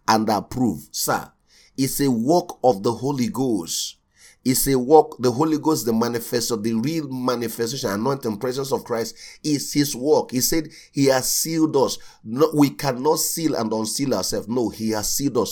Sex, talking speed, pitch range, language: male, 175 wpm, 115-145 Hz, English